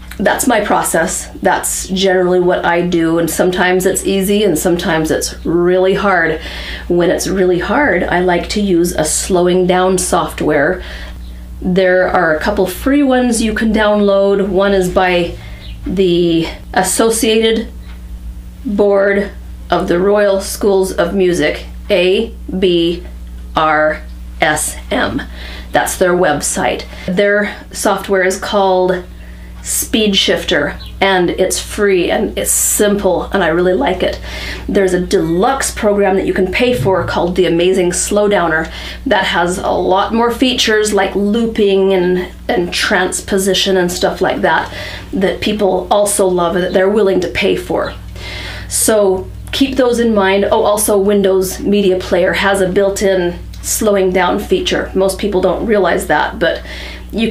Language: English